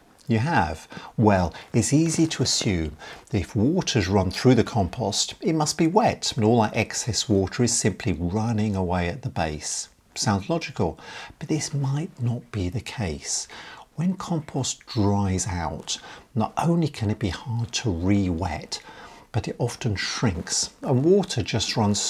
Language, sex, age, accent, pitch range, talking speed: English, male, 50-69, British, 100-130 Hz, 160 wpm